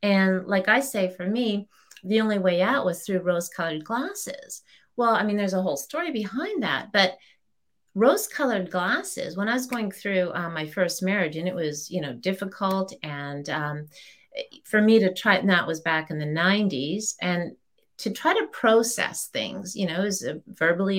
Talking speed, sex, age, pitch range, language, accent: 190 wpm, female, 40-59, 180-240 Hz, English, American